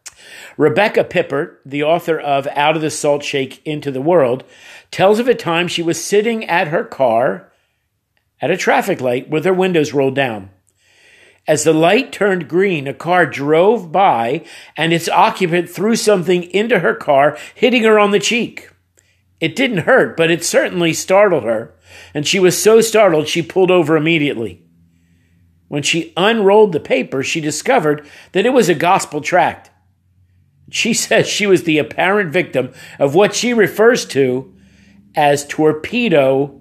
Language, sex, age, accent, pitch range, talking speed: English, male, 50-69, American, 140-200 Hz, 160 wpm